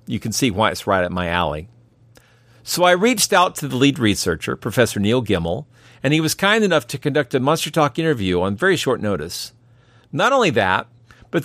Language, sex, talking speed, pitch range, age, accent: English, male, 205 wpm, 110-150 Hz, 50-69, American